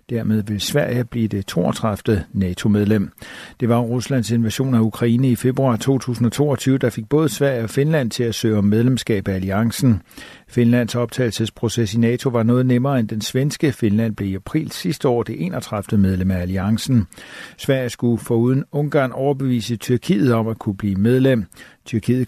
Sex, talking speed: male, 165 wpm